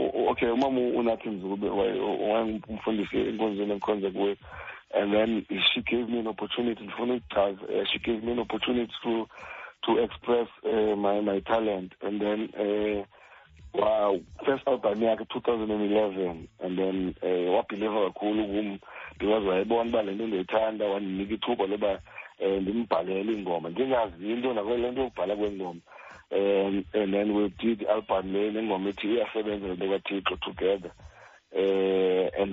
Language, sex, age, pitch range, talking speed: English, male, 60-79, 95-115 Hz, 95 wpm